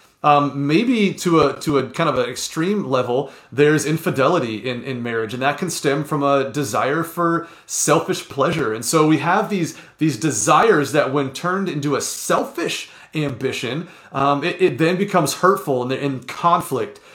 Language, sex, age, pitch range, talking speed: English, male, 30-49, 130-170 Hz, 170 wpm